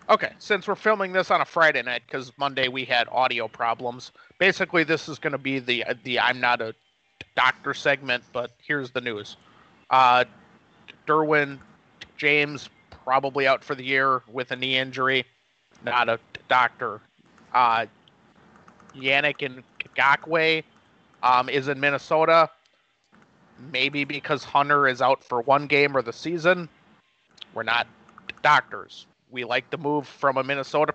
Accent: American